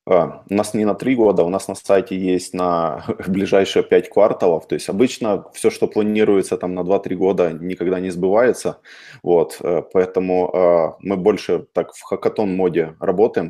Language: Russian